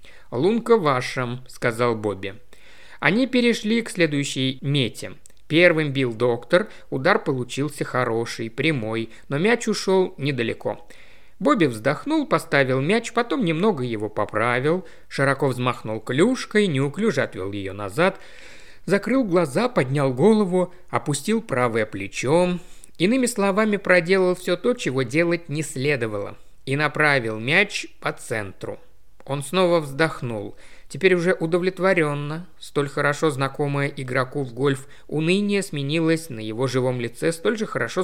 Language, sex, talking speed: Russian, male, 120 wpm